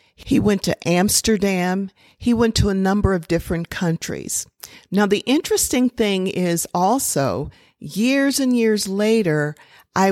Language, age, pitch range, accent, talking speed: English, 50-69, 170-220 Hz, American, 135 wpm